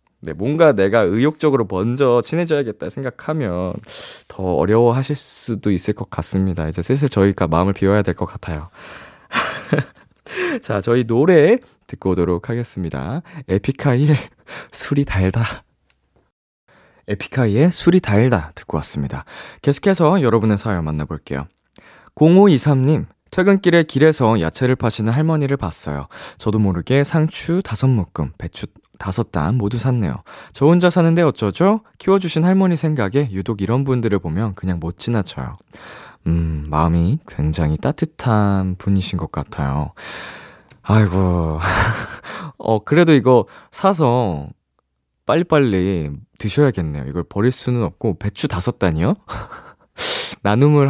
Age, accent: 20-39, native